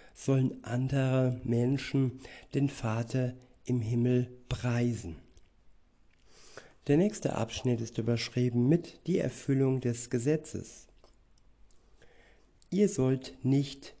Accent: German